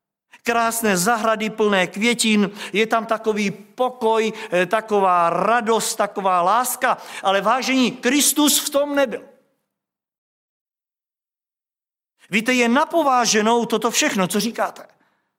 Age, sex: 50-69, male